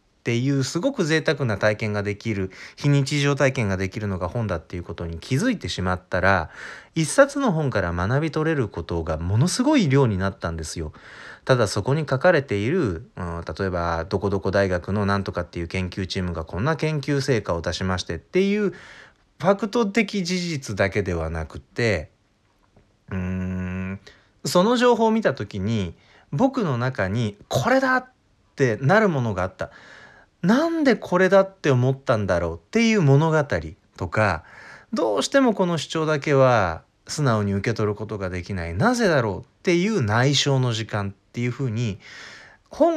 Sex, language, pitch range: male, Japanese, 95-155 Hz